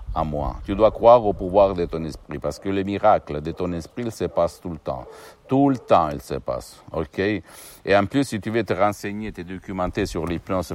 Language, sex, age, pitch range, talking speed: Italian, male, 60-79, 75-95 Hz, 235 wpm